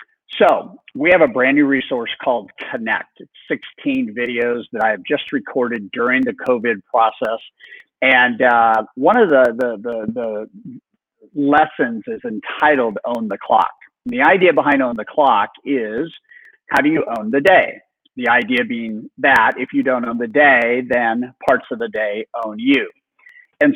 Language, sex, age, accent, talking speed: English, male, 50-69, American, 170 wpm